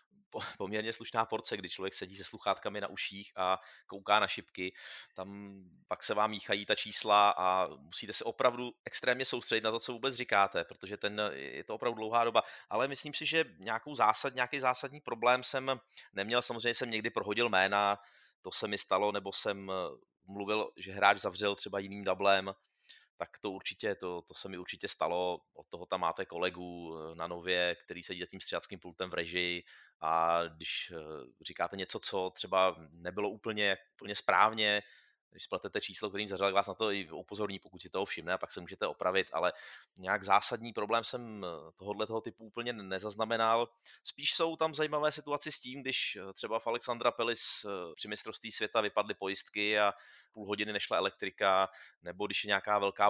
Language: Czech